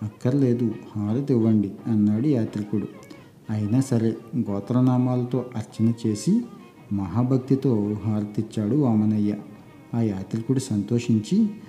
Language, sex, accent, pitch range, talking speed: Telugu, male, native, 110-130 Hz, 75 wpm